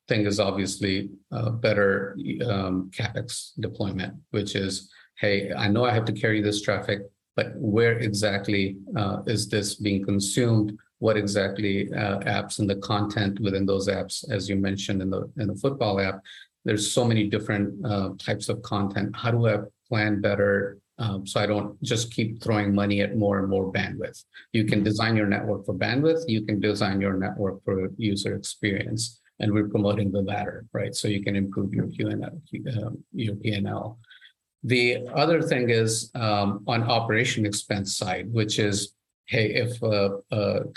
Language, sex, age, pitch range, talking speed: English, male, 50-69, 100-110 Hz, 170 wpm